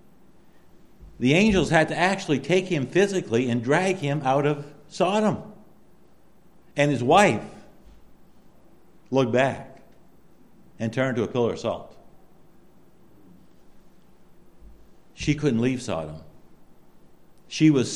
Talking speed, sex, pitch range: 105 wpm, male, 120-175 Hz